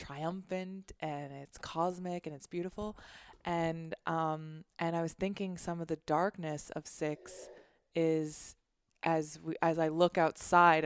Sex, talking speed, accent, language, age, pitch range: female, 140 wpm, American, English, 20-39, 155-175 Hz